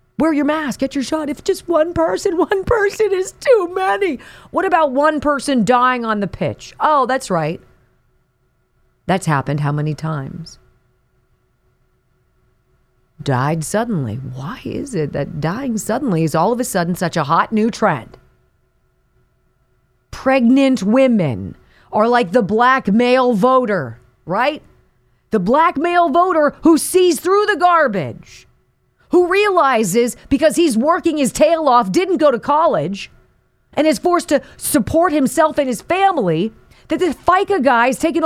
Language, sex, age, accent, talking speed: English, female, 40-59, American, 145 wpm